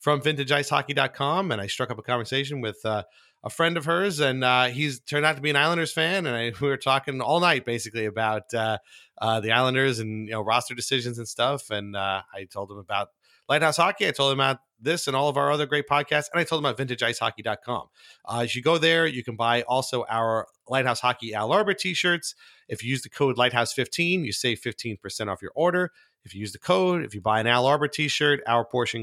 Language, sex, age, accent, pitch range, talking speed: English, male, 30-49, American, 115-145 Hz, 225 wpm